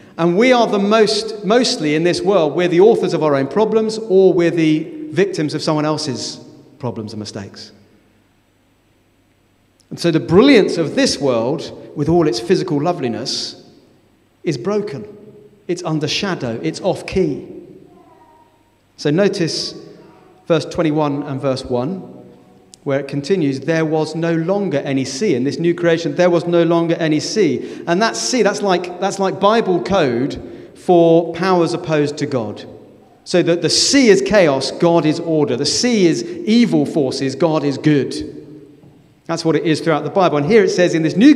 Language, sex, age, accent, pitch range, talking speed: English, male, 40-59, British, 145-190 Hz, 170 wpm